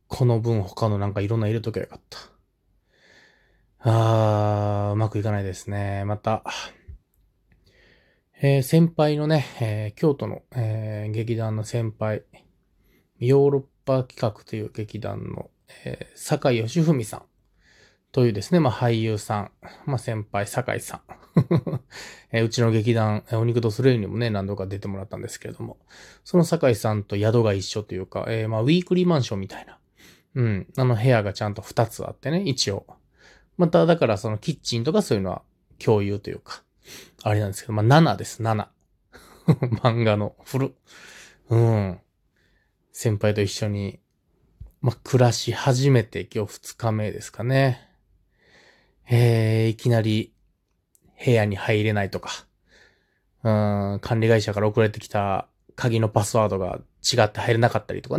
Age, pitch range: 20-39, 105-120 Hz